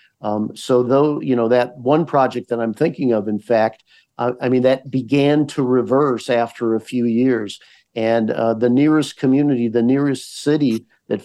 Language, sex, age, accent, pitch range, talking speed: English, male, 50-69, American, 115-135 Hz, 180 wpm